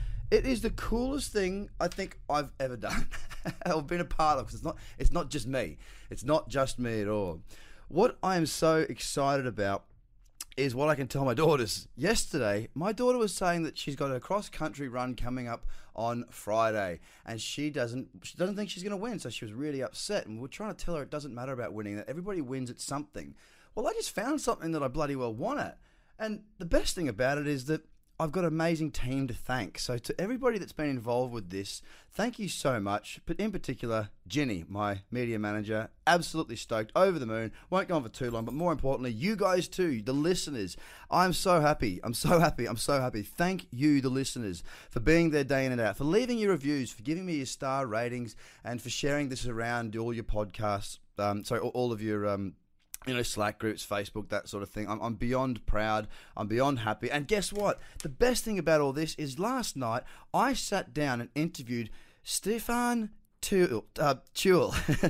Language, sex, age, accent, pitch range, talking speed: English, male, 20-39, Australian, 115-170 Hz, 210 wpm